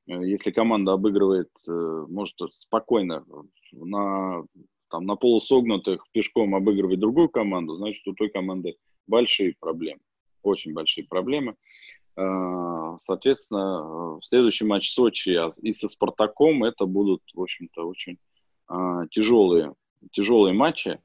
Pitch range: 95-120 Hz